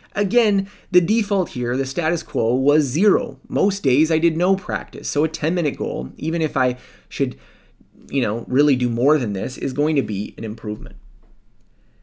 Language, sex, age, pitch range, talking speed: English, male, 30-49, 120-165 Hz, 180 wpm